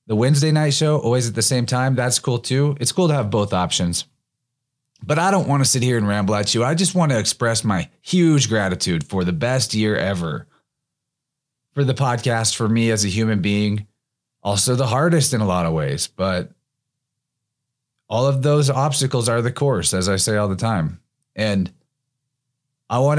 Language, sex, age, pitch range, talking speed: English, male, 30-49, 105-140 Hz, 195 wpm